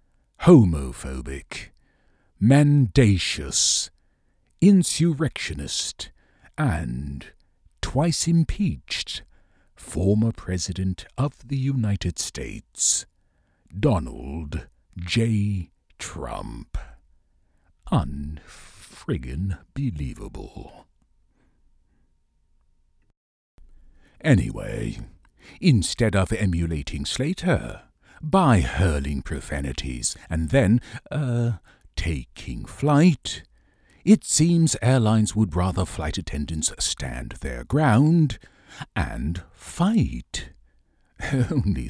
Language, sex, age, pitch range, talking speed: English, male, 60-79, 75-125 Hz, 60 wpm